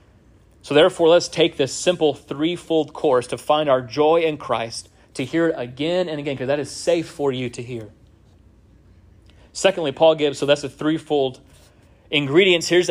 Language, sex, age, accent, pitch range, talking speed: English, male, 30-49, American, 120-165 Hz, 170 wpm